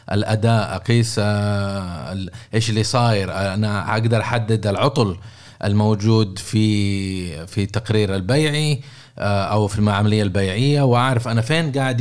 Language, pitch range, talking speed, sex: Arabic, 100-135 Hz, 115 wpm, male